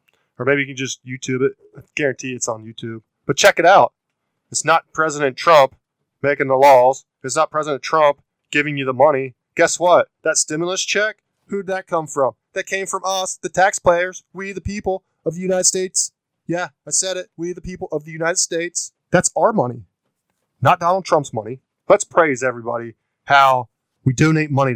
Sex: male